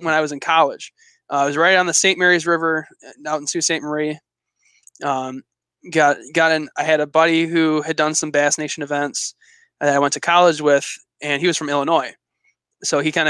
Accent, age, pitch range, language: American, 20-39, 145-165 Hz, English